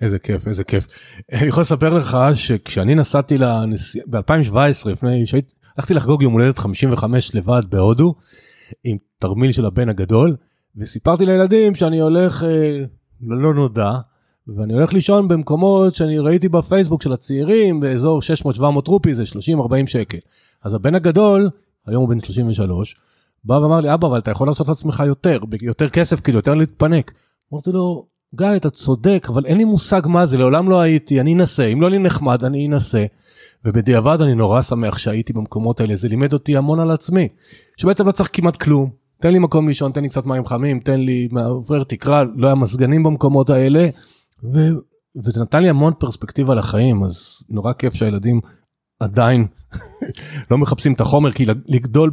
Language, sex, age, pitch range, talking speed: Hebrew, male, 30-49, 115-155 Hz, 170 wpm